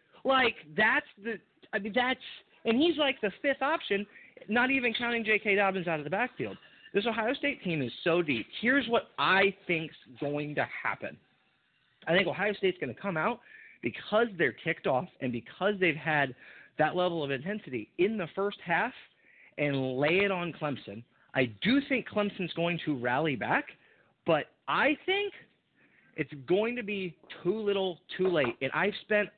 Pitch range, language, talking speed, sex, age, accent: 150-225 Hz, English, 180 wpm, male, 30-49, American